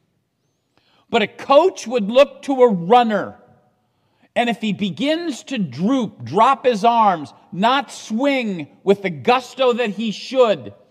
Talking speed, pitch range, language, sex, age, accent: 140 wpm, 185-245 Hz, English, male, 50-69, American